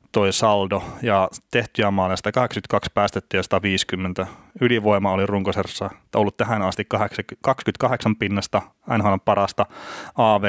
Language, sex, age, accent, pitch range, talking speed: Finnish, male, 30-49, native, 95-115 Hz, 110 wpm